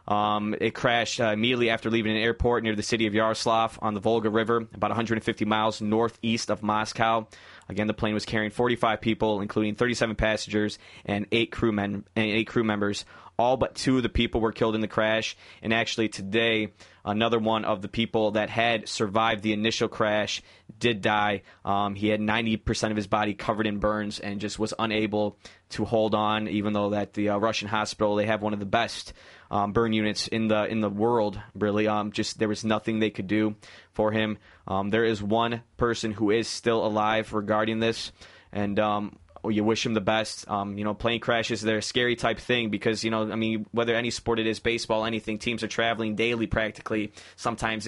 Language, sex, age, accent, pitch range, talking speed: English, male, 20-39, American, 105-115 Hz, 205 wpm